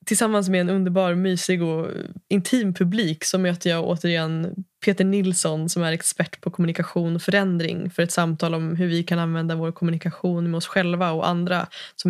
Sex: female